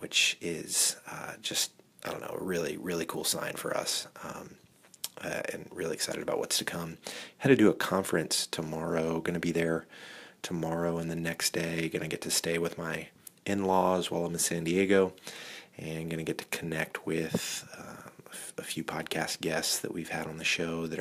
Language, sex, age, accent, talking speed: English, male, 30-49, American, 190 wpm